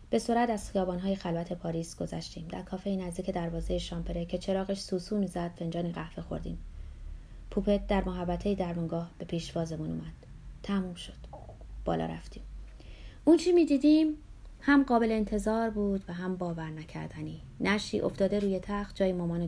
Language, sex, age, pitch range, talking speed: Persian, female, 30-49, 165-210 Hz, 145 wpm